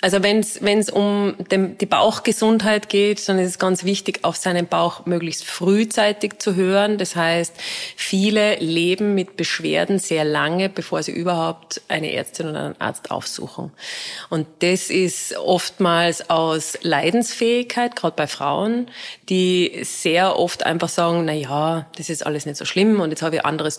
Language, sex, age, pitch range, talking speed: German, female, 30-49, 165-205 Hz, 160 wpm